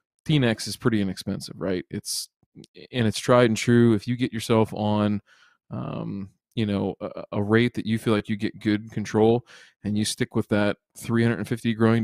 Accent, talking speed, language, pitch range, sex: American, 185 wpm, English, 100-115 Hz, male